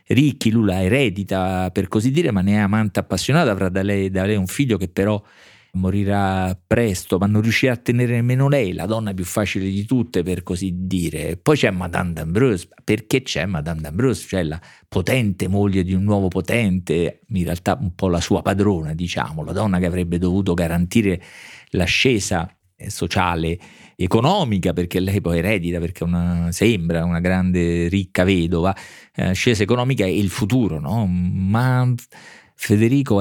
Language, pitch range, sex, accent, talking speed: Italian, 90-110 Hz, male, native, 165 wpm